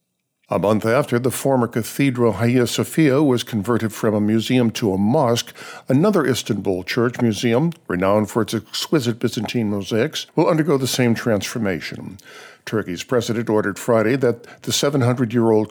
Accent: American